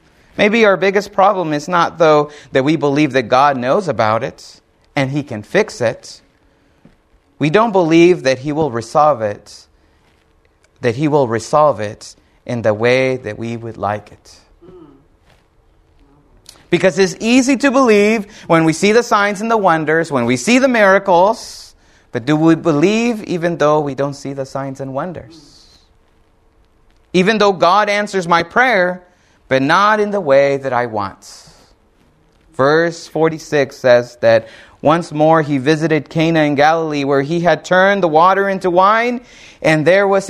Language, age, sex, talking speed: English, 30-49, male, 160 wpm